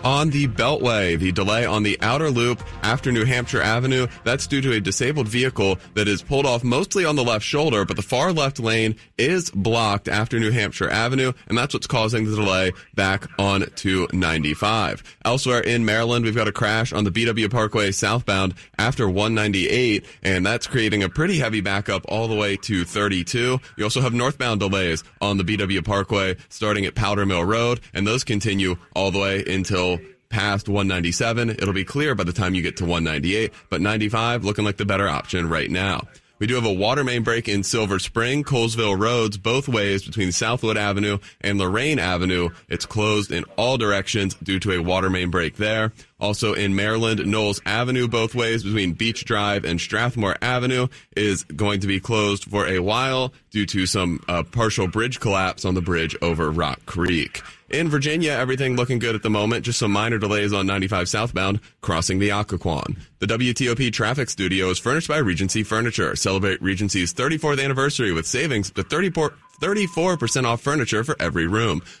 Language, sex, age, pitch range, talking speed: English, male, 30-49, 95-120 Hz, 185 wpm